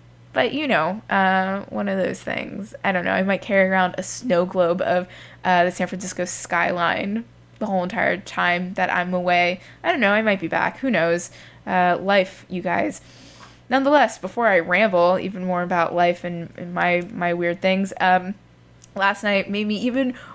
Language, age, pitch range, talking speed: English, 20-39, 175-200 Hz, 190 wpm